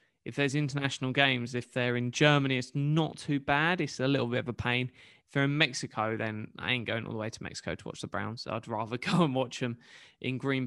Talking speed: 245 wpm